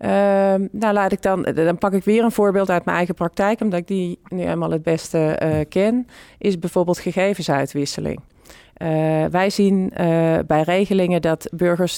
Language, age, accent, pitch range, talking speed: Dutch, 40-59, Dutch, 155-190 Hz, 175 wpm